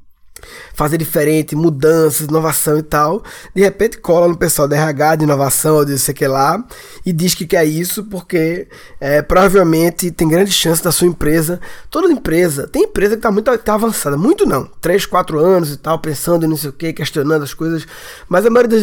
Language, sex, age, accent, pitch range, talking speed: Portuguese, male, 20-39, Brazilian, 150-200 Hz, 200 wpm